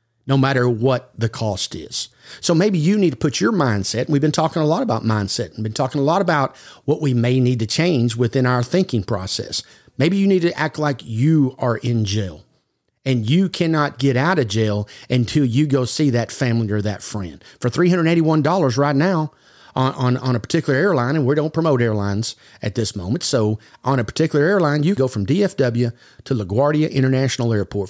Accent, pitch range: American, 115-160 Hz